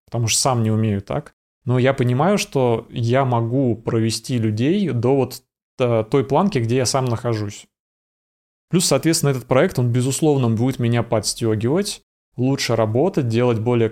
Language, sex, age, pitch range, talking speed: Russian, male, 20-39, 110-130 Hz, 150 wpm